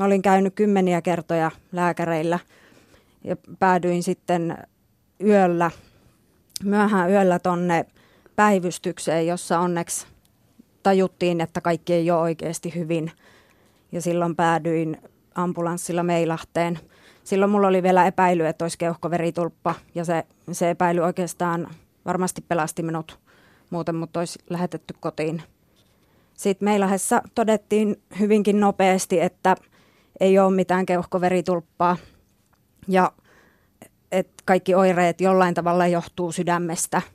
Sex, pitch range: female, 170-190 Hz